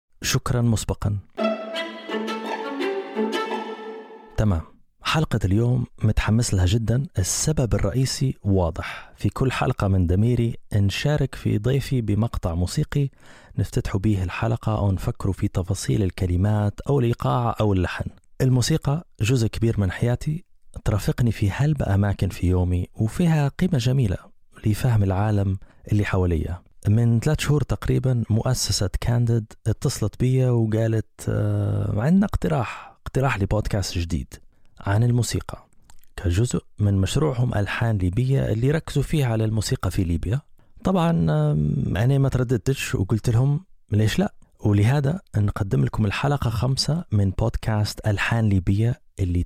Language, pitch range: Arabic, 100-130 Hz